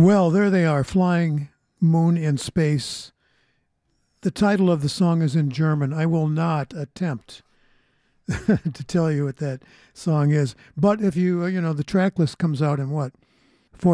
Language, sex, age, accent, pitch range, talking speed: English, male, 60-79, American, 140-180 Hz, 170 wpm